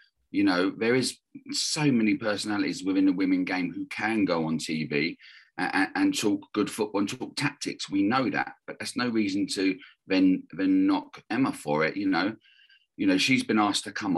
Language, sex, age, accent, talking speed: English, male, 40-59, British, 200 wpm